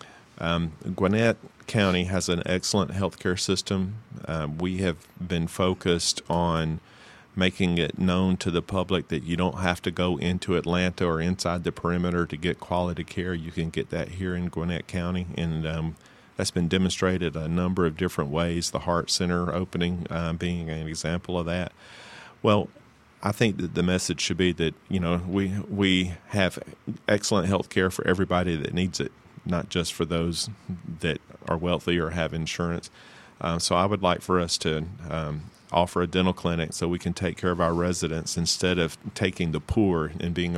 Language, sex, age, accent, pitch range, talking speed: English, male, 40-59, American, 85-90 Hz, 185 wpm